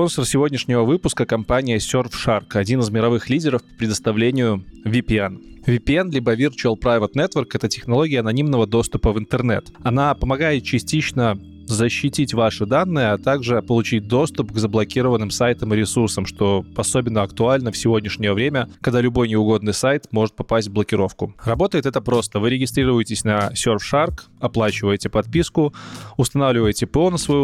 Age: 20-39